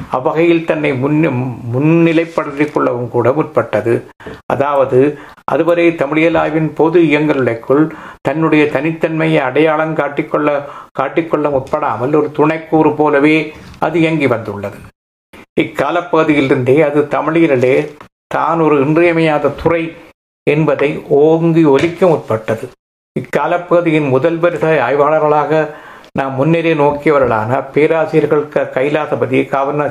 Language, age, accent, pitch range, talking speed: Tamil, 60-79, native, 135-160 Hz, 80 wpm